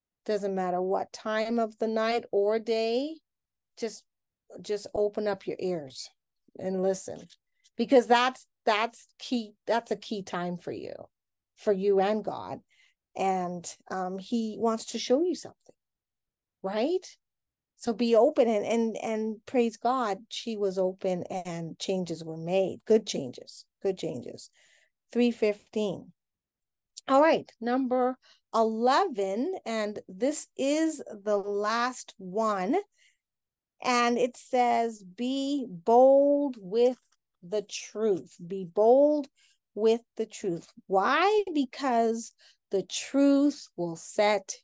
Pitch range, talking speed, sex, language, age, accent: 195-245 Hz, 120 wpm, female, English, 40-59, American